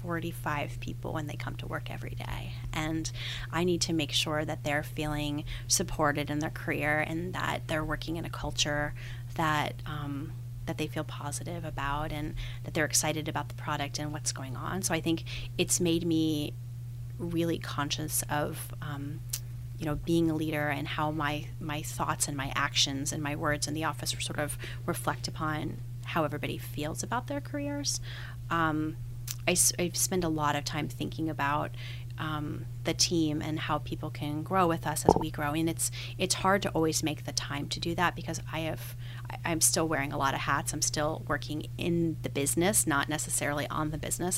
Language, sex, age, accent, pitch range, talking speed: English, female, 30-49, American, 120-155 Hz, 190 wpm